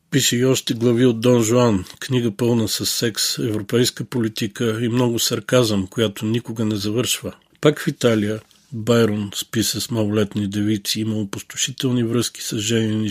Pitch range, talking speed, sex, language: 100-115 Hz, 150 wpm, male, Bulgarian